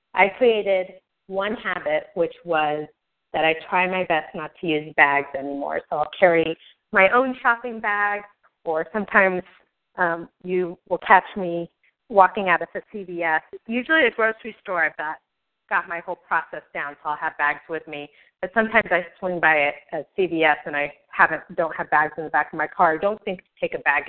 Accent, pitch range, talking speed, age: American, 160-210 Hz, 190 wpm, 30-49